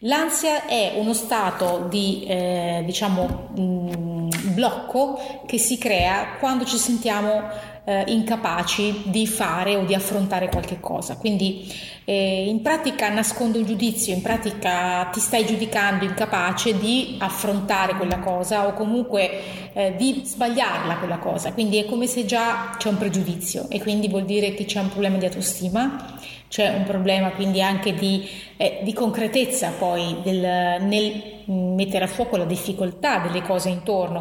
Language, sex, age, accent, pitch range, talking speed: Italian, female, 30-49, native, 185-225 Hz, 150 wpm